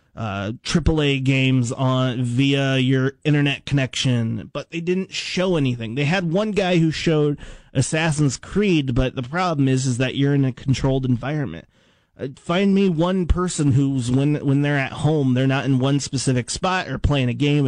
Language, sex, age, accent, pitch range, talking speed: English, male, 30-49, American, 125-150 Hz, 180 wpm